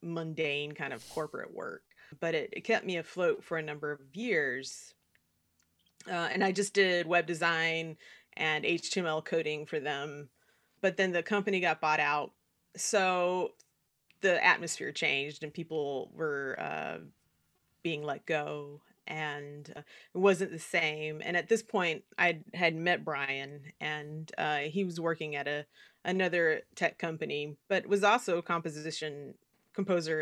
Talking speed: 150 wpm